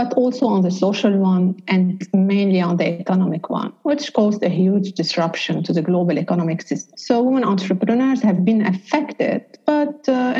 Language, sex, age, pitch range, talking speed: English, female, 50-69, 185-245 Hz, 175 wpm